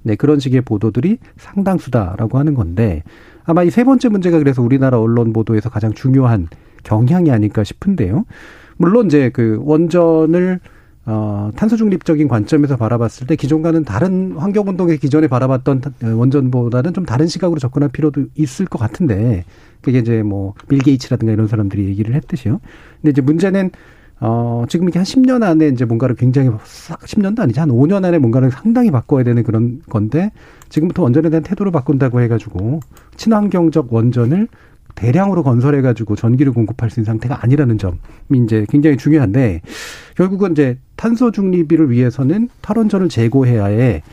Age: 40-59